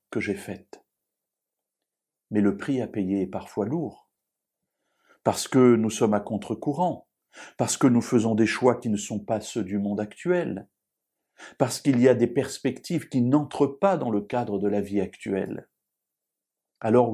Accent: French